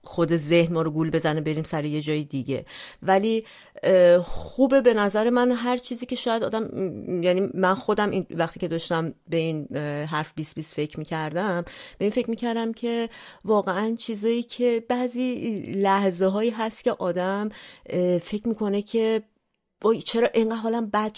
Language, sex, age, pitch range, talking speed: Persian, female, 30-49, 155-210 Hz, 160 wpm